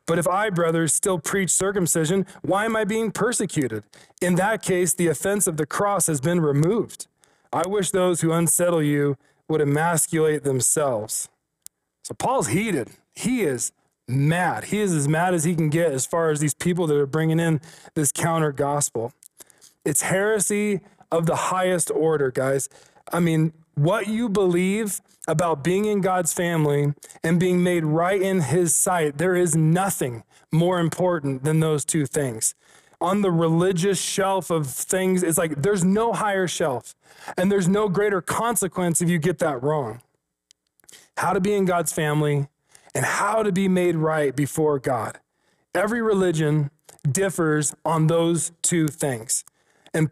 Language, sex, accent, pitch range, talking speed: English, male, American, 155-190 Hz, 160 wpm